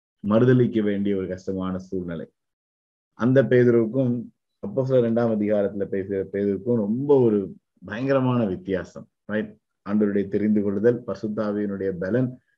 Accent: native